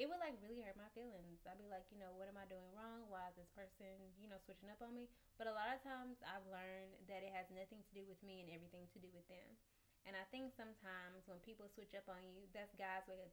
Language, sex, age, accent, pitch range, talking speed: English, female, 10-29, American, 185-225 Hz, 280 wpm